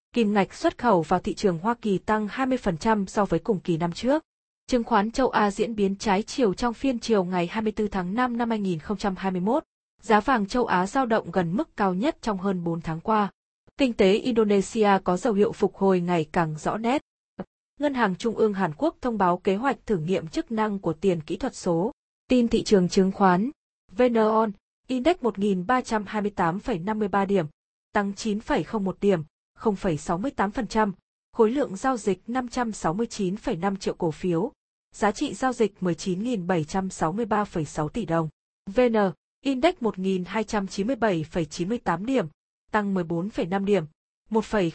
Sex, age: female, 20-39